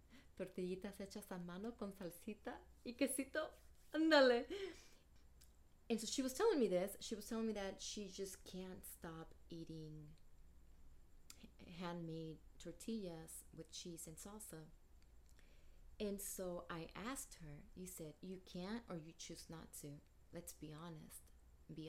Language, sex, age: English, female, 30-49